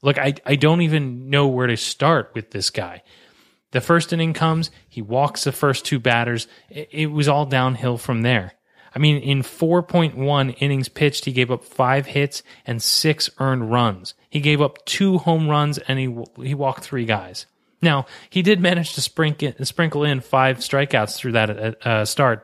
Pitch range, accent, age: 110-145 Hz, American, 30-49